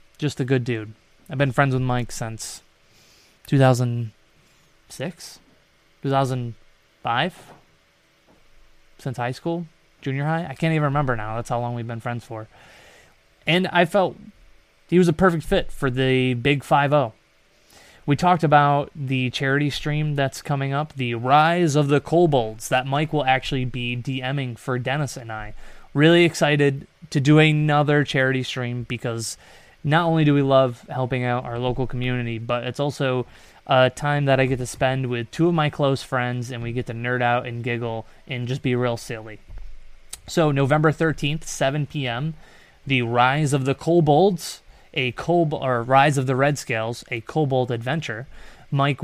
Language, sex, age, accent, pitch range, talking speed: English, male, 20-39, American, 120-145 Hz, 165 wpm